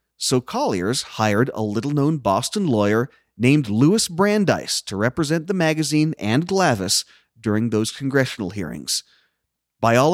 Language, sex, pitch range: English, male, 110-150 Hz